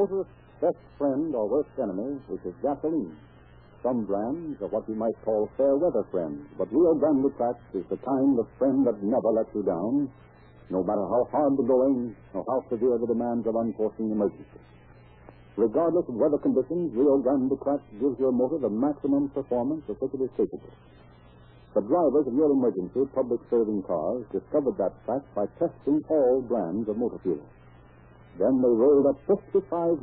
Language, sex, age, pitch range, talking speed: English, male, 60-79, 90-145 Hz, 175 wpm